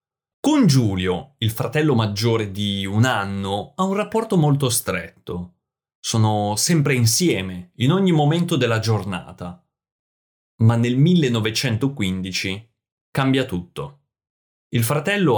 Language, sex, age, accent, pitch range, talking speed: Italian, male, 30-49, native, 100-140 Hz, 110 wpm